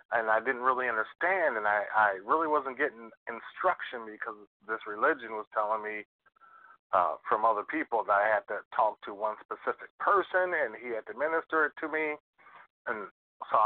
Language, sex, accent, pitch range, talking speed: English, male, American, 100-120 Hz, 180 wpm